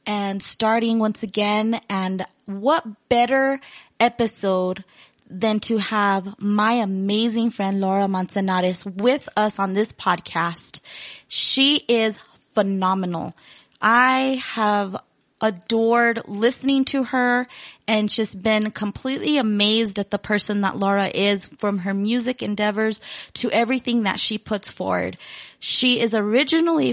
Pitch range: 200-245 Hz